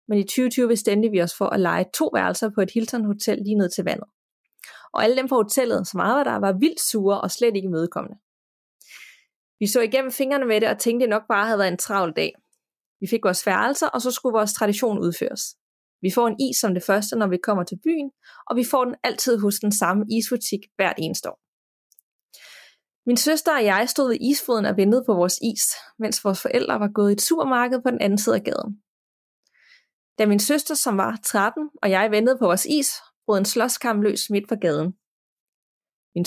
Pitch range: 200-245 Hz